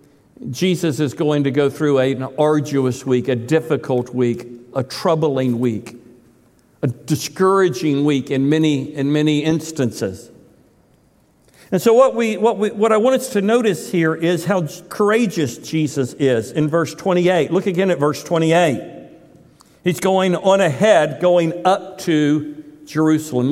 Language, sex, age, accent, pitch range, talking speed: English, male, 60-79, American, 140-185 Hz, 145 wpm